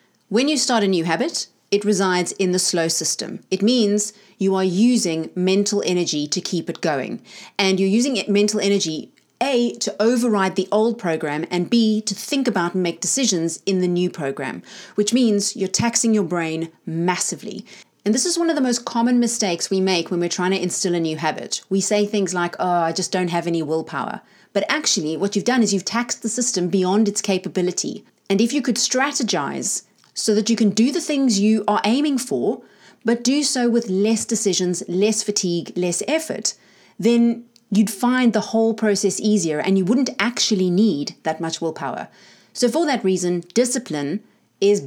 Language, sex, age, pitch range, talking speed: English, female, 30-49, 180-230 Hz, 190 wpm